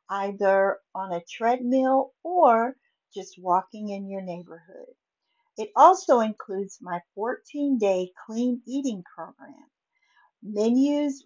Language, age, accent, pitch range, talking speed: English, 50-69, American, 195-275 Hz, 100 wpm